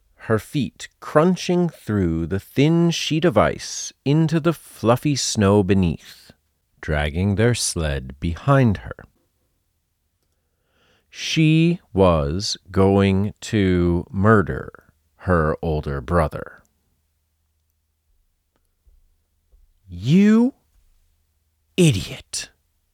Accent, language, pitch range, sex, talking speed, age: American, English, 80-120 Hz, male, 75 wpm, 40-59